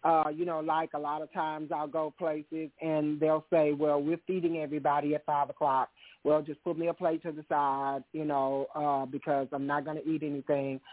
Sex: male